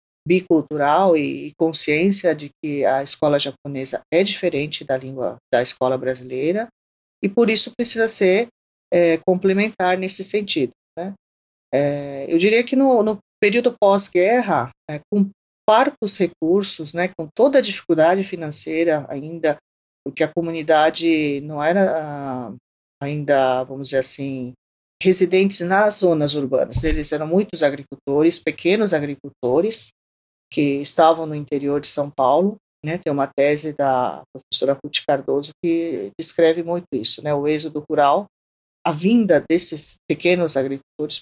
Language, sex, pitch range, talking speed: Portuguese, female, 145-180 Hz, 130 wpm